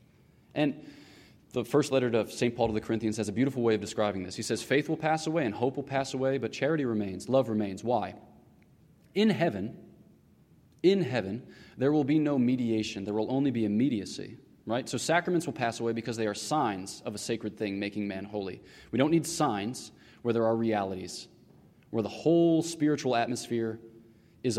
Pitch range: 110-140 Hz